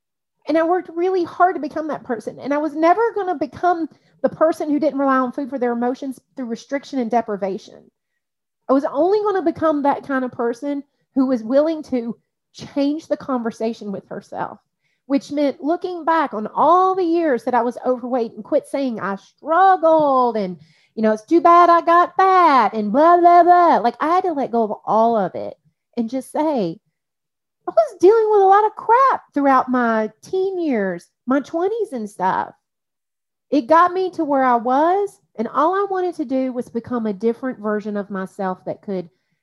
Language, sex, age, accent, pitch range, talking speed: English, female, 30-49, American, 215-320 Hz, 195 wpm